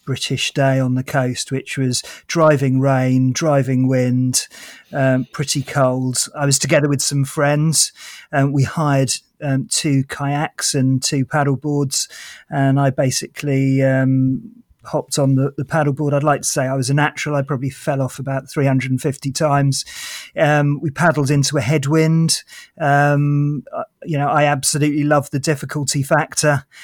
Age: 30-49